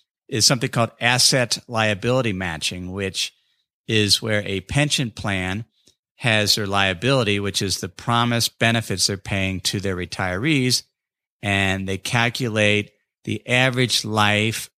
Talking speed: 125 wpm